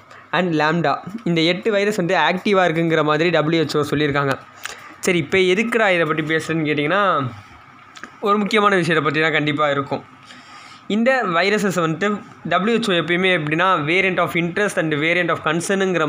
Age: 20-39